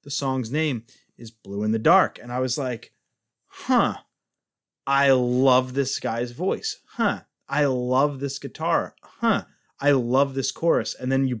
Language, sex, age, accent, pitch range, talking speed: English, male, 20-39, American, 115-150 Hz, 165 wpm